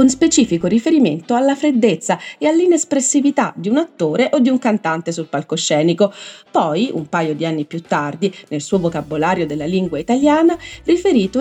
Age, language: 30-49, Italian